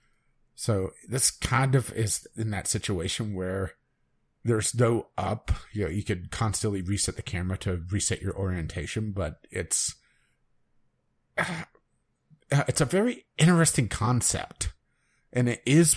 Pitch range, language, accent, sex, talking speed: 90-115 Hz, English, American, male, 130 wpm